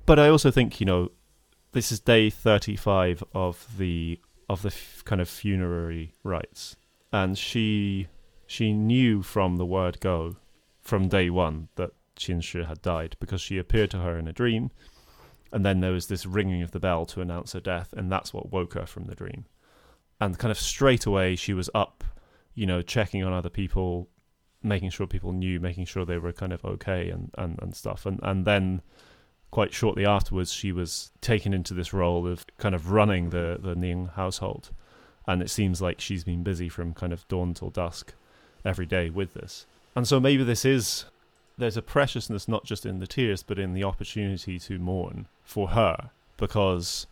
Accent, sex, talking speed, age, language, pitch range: British, male, 195 wpm, 20-39, English, 90-105 Hz